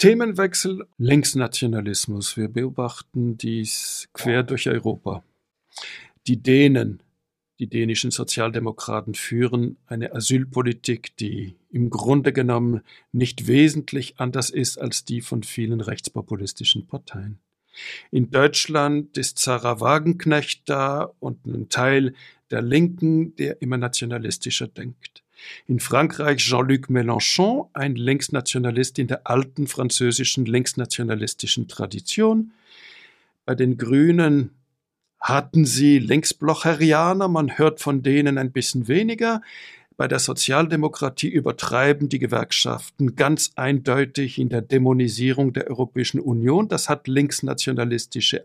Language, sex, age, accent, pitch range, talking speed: German, male, 60-79, German, 120-150 Hz, 110 wpm